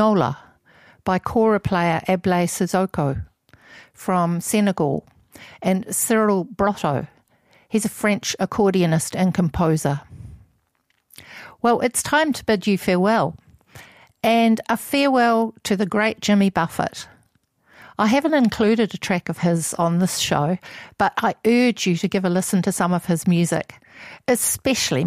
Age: 50-69